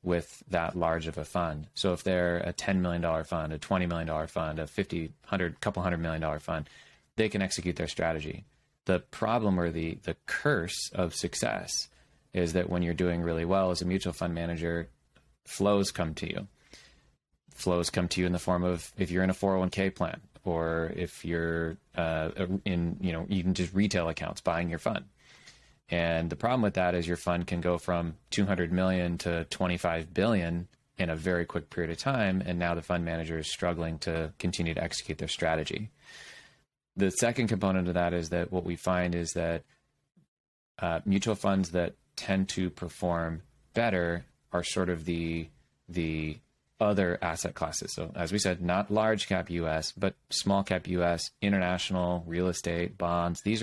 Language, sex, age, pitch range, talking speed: English, male, 20-39, 85-95 Hz, 180 wpm